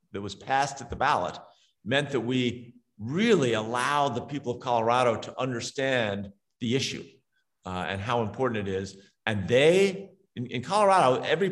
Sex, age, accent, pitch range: male, 50-69, American, 100-130 Hz